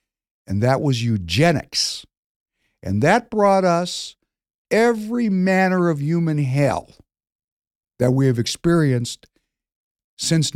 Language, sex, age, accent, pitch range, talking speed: English, male, 60-79, American, 115-170 Hz, 100 wpm